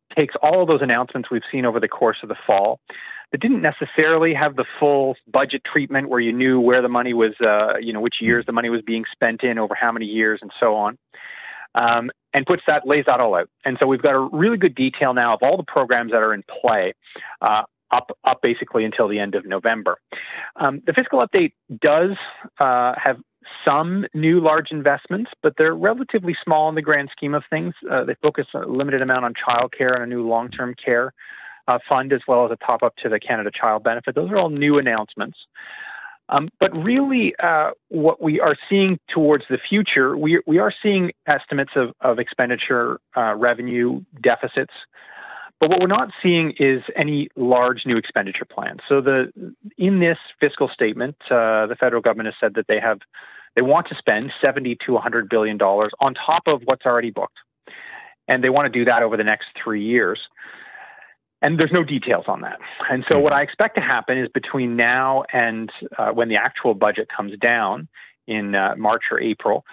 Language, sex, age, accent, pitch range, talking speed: English, male, 30-49, American, 120-165 Hz, 205 wpm